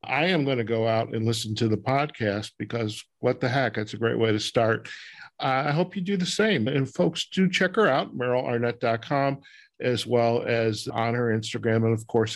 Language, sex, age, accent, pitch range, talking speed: English, male, 50-69, American, 115-150 Hz, 215 wpm